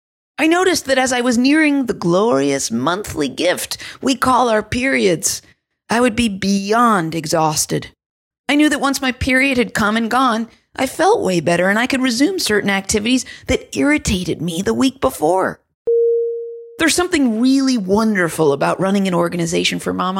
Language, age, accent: English, 40-59, American